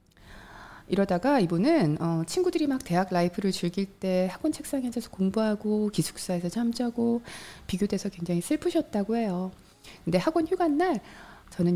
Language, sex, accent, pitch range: Korean, female, native, 170-245 Hz